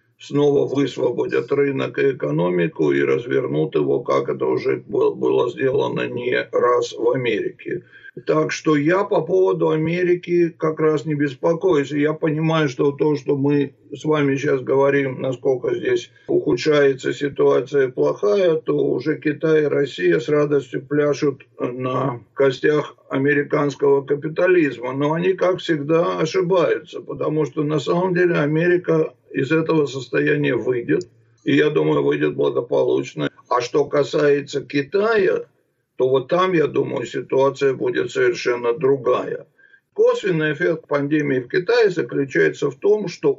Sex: male